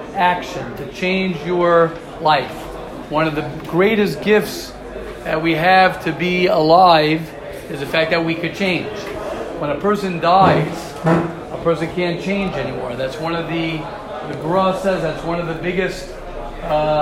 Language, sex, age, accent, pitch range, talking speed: English, male, 40-59, American, 160-200 Hz, 160 wpm